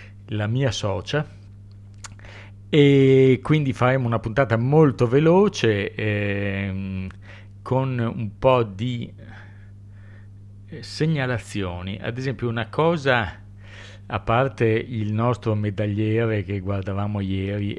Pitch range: 100-115 Hz